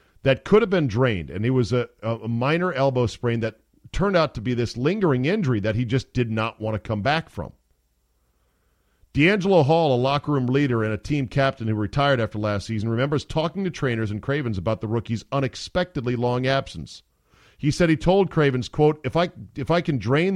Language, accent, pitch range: English, American, 100-145 Hz